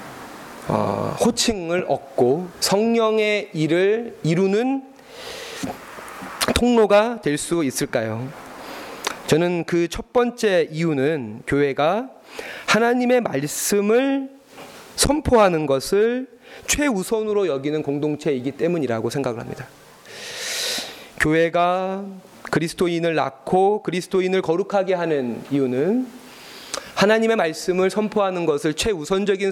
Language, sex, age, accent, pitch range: Korean, male, 30-49, native, 155-235 Hz